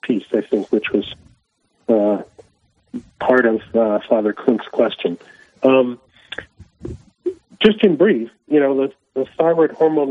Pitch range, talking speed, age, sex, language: 110-140 Hz, 130 wpm, 40-59, male, English